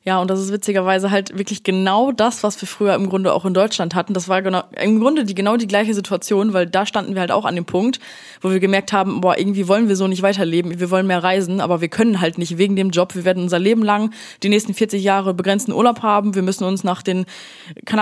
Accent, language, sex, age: German, German, female, 20-39